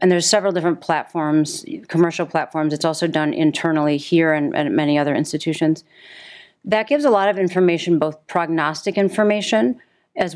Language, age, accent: English, 40-59, American